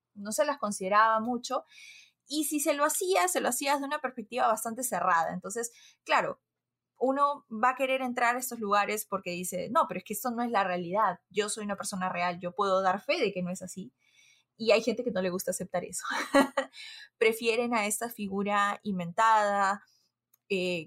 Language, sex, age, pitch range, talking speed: Spanish, female, 20-39, 180-235 Hz, 195 wpm